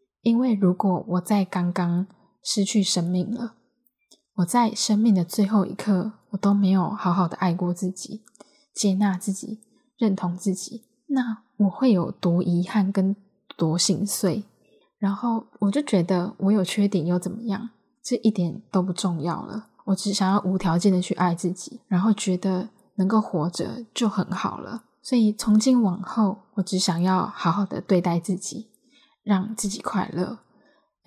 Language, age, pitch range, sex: Chinese, 10-29, 185-225 Hz, female